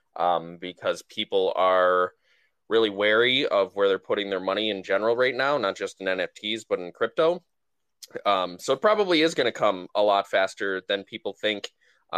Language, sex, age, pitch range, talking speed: English, male, 20-39, 95-130 Hz, 185 wpm